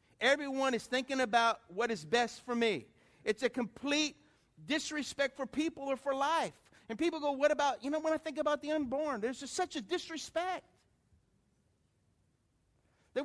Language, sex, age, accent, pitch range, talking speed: English, male, 50-69, American, 215-290 Hz, 170 wpm